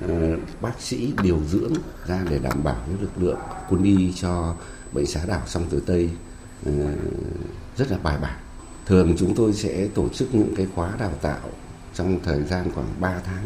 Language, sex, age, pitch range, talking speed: Vietnamese, male, 60-79, 80-100 Hz, 185 wpm